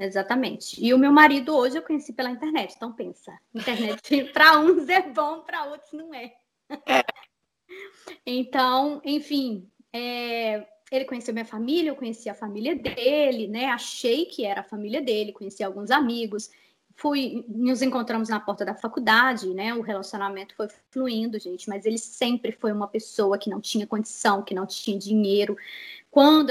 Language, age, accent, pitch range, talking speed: Portuguese, 20-39, Brazilian, 220-300 Hz, 160 wpm